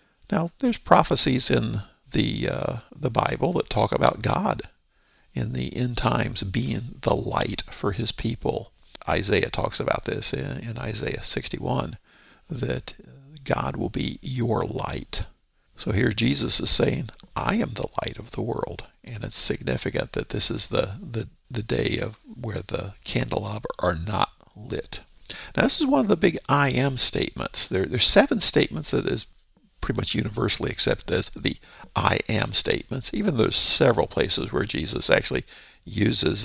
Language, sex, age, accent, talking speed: English, male, 50-69, American, 160 wpm